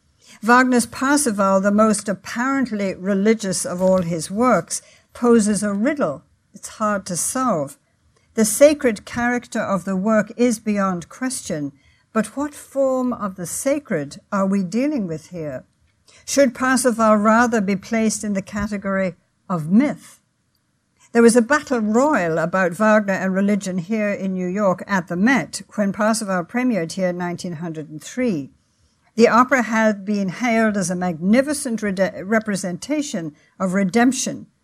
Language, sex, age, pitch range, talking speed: English, female, 60-79, 185-235 Hz, 140 wpm